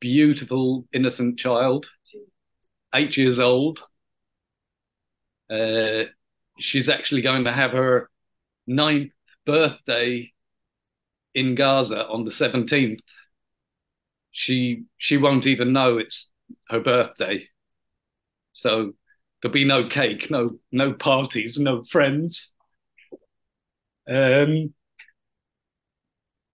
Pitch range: 120-145 Hz